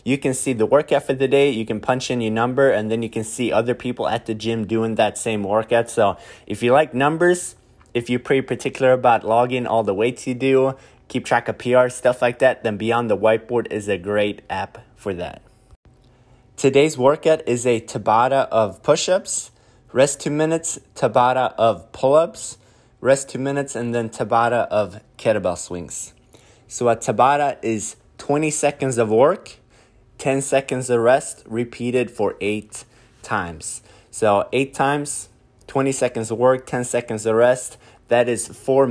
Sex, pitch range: male, 110-135 Hz